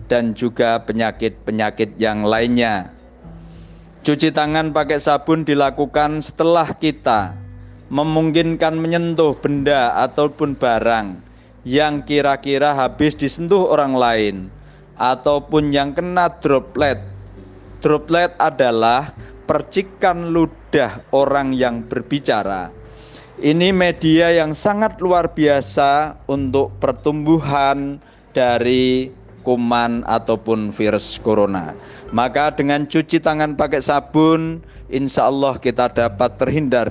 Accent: native